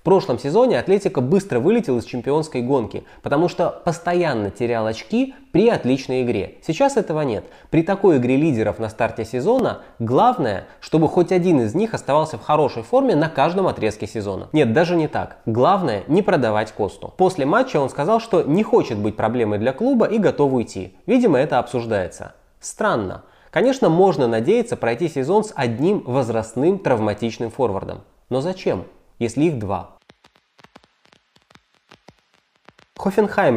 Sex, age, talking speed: male, 20-39, 150 wpm